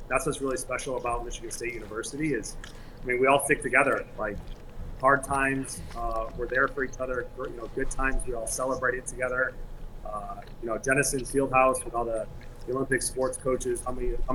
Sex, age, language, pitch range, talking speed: male, 30-49, English, 115-135 Hz, 195 wpm